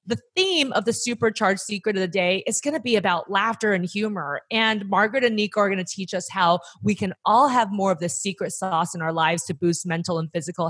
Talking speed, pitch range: 245 wpm, 170-215 Hz